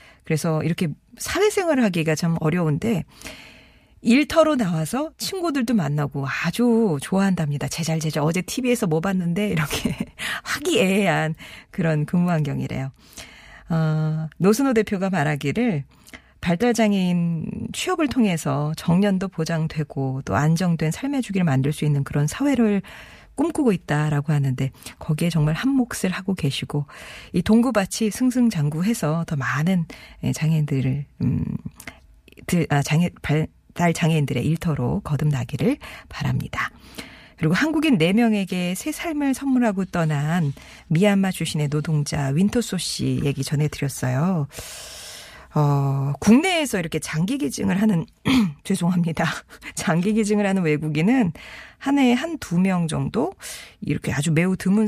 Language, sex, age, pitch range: Korean, female, 40-59, 150-210 Hz